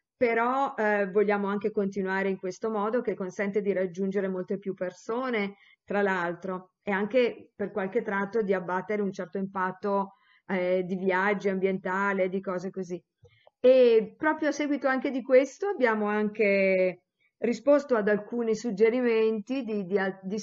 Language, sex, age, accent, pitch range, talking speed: Italian, female, 50-69, native, 200-250 Hz, 145 wpm